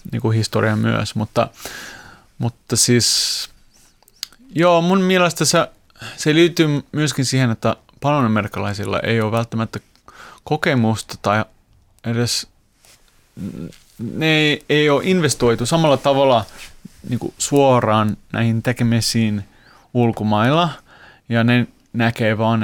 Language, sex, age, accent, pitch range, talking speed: Finnish, male, 30-49, native, 110-130 Hz, 100 wpm